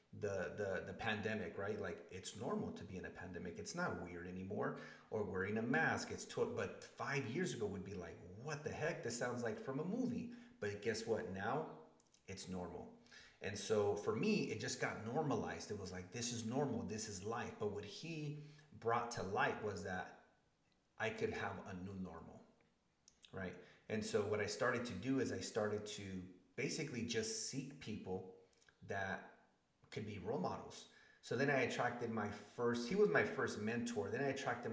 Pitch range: 105-150 Hz